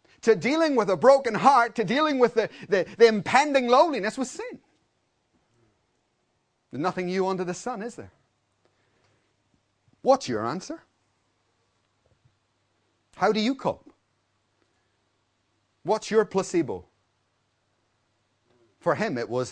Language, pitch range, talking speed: English, 105-175 Hz, 115 wpm